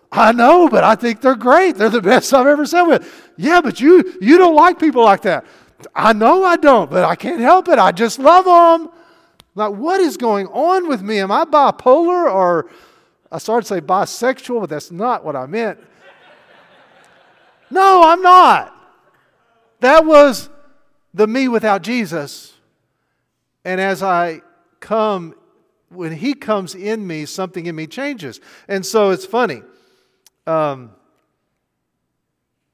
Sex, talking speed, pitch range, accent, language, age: male, 155 wpm, 160-260 Hz, American, English, 50-69